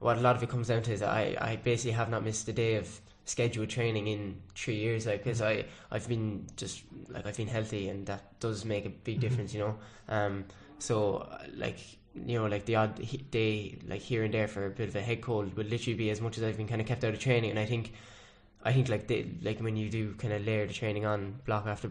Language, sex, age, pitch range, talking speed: English, male, 10-29, 100-115 Hz, 260 wpm